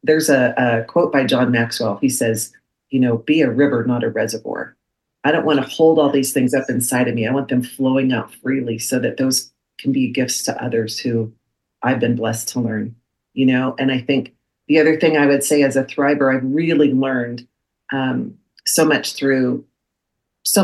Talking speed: 205 wpm